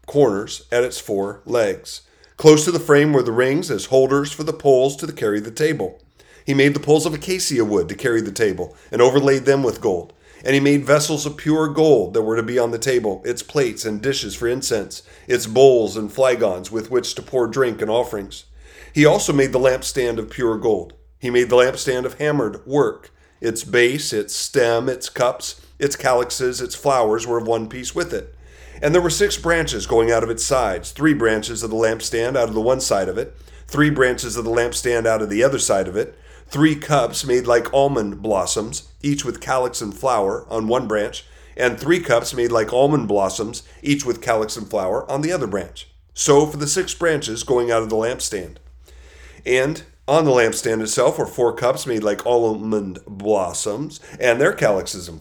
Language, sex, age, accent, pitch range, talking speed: English, male, 40-59, American, 110-145 Hz, 205 wpm